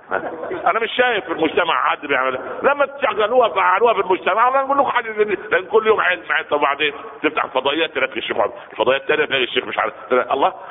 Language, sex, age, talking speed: Arabic, male, 50-69, 185 wpm